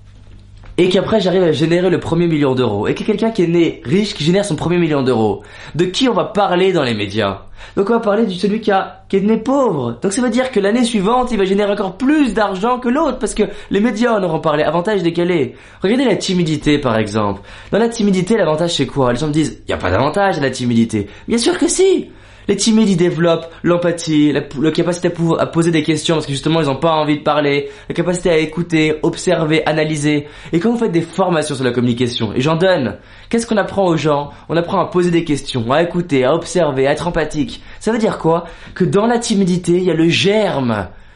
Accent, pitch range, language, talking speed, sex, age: French, 145-200 Hz, French, 245 wpm, male, 20-39